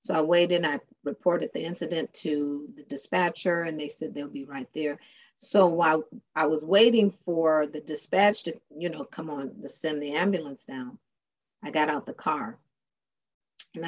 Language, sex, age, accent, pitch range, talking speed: English, female, 40-59, American, 155-190 Hz, 180 wpm